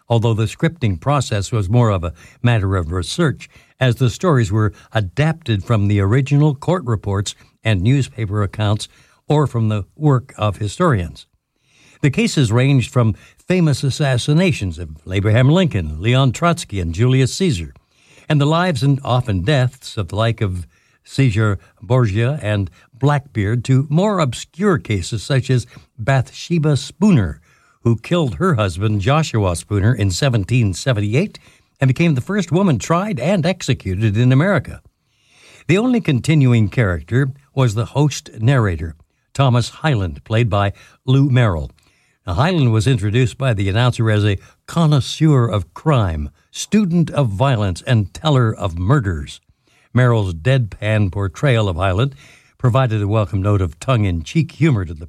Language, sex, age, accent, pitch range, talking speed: English, male, 60-79, American, 105-140 Hz, 140 wpm